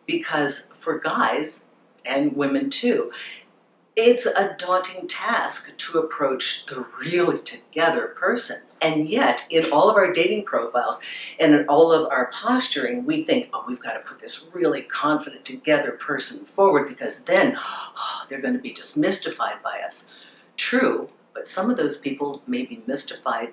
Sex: female